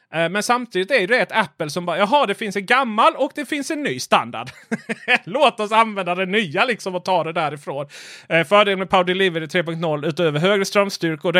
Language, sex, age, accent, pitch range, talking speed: Swedish, male, 30-49, native, 150-195 Hz, 200 wpm